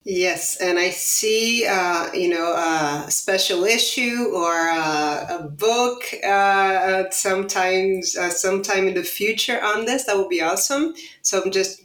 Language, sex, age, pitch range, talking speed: English, female, 30-49, 185-245 Hz, 150 wpm